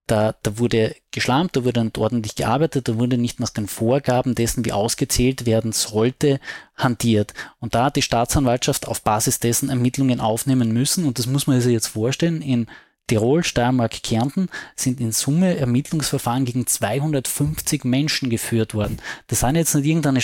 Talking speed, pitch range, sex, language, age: 170 wpm, 115-140 Hz, male, German, 20-39